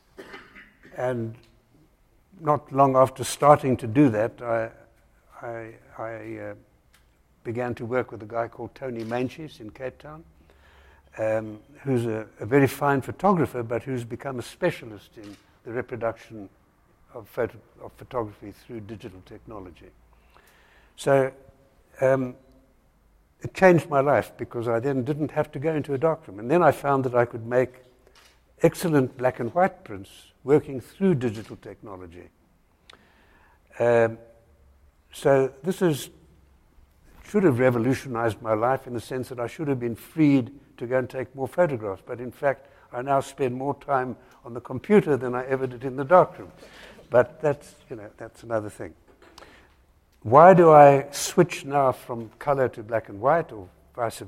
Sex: male